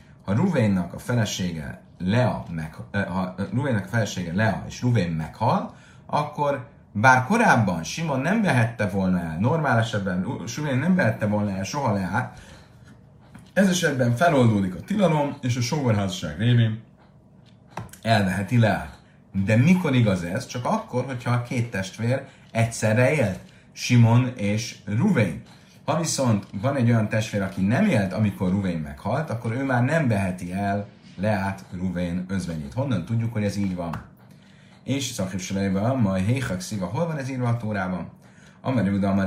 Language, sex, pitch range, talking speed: Hungarian, male, 95-125 Hz, 140 wpm